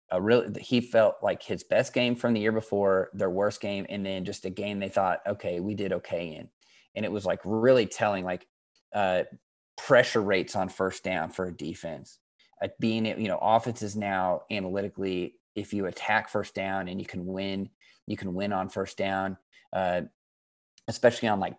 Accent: American